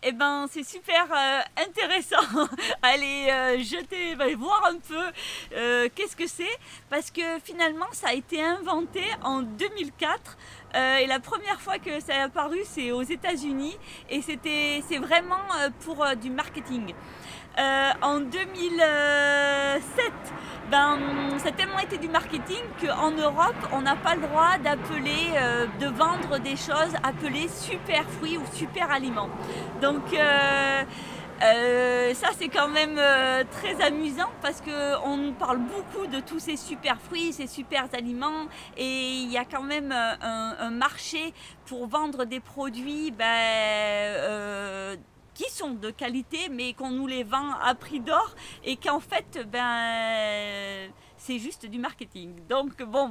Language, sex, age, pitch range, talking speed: French, female, 40-59, 250-320 Hz, 145 wpm